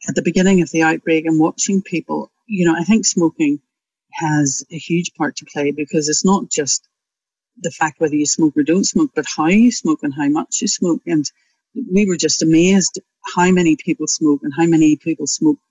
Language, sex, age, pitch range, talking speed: English, female, 60-79, 150-195 Hz, 210 wpm